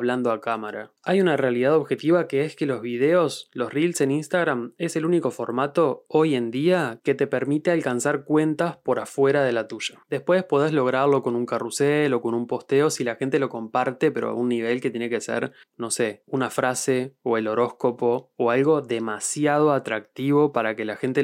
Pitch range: 120-145 Hz